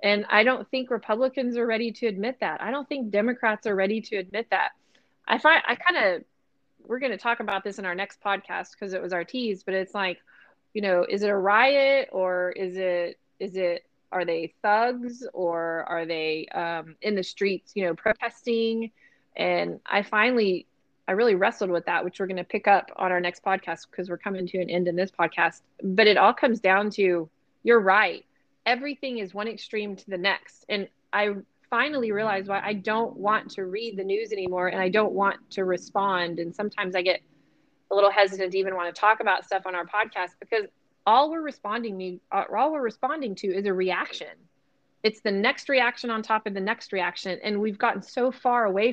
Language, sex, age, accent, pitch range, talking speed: English, female, 20-39, American, 185-230 Hz, 205 wpm